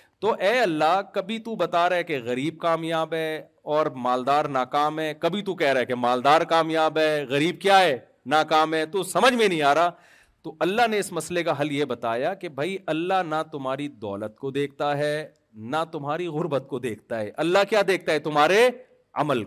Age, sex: 40-59, male